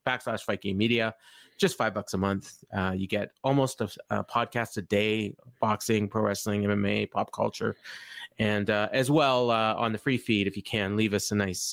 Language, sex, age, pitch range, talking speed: English, male, 30-49, 100-130 Hz, 205 wpm